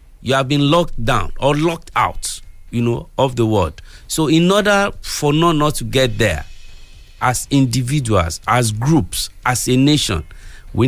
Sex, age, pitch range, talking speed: male, 50-69, 115-155 Hz, 165 wpm